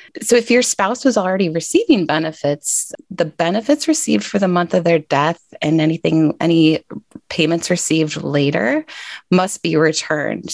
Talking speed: 150 wpm